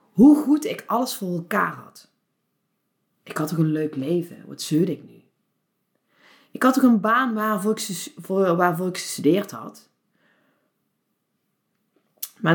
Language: Dutch